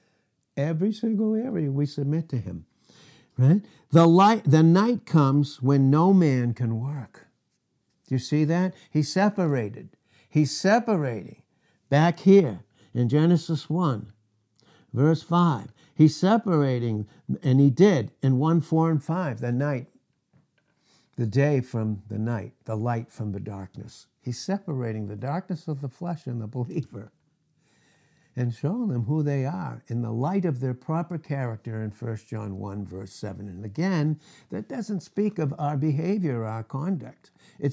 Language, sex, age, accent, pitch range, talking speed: English, male, 60-79, American, 130-180 Hz, 150 wpm